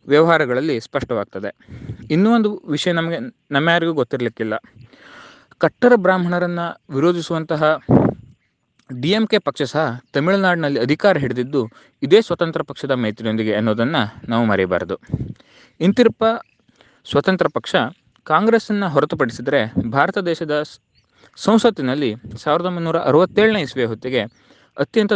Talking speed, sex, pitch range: 90 wpm, male, 125-195 Hz